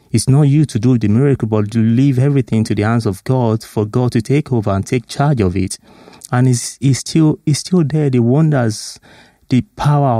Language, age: English, 30-49